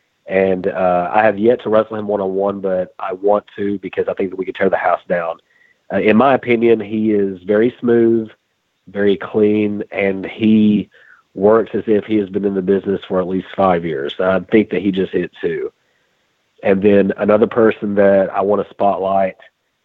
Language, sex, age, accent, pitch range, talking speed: English, male, 40-59, American, 95-110 Hz, 200 wpm